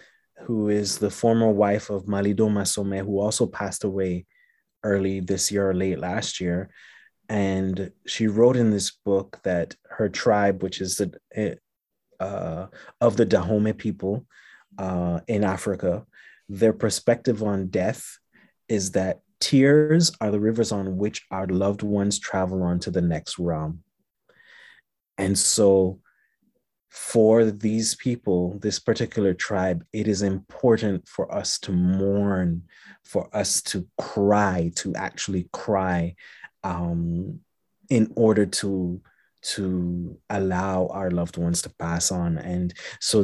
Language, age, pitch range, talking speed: English, 30-49, 90-110 Hz, 135 wpm